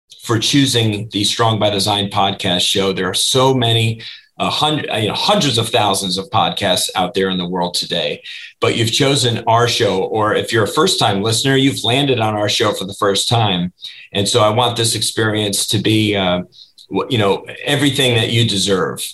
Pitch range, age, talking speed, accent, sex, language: 100-130 Hz, 40-59, 195 wpm, American, male, English